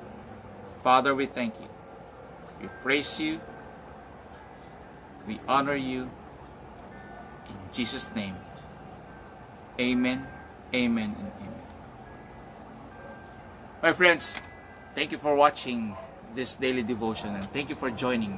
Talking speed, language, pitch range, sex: 100 wpm, English, 110-150 Hz, male